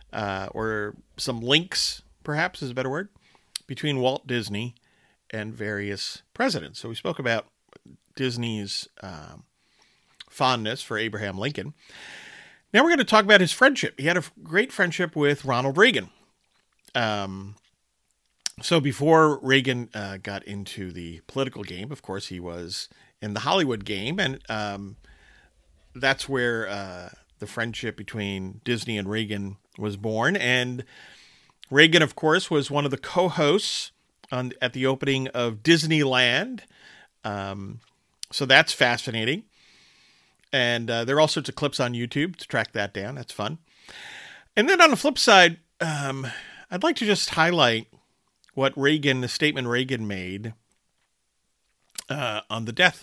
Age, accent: 40-59, American